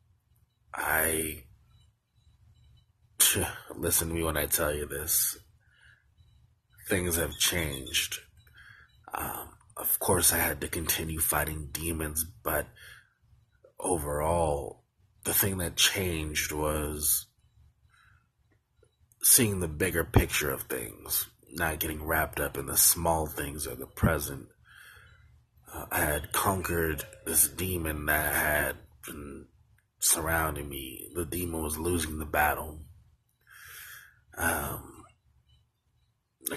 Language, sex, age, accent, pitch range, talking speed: English, male, 30-49, American, 75-90 Hz, 105 wpm